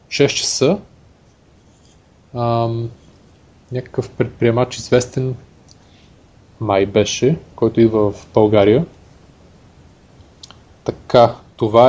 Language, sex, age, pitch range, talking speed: Bulgarian, male, 30-49, 110-135 Hz, 70 wpm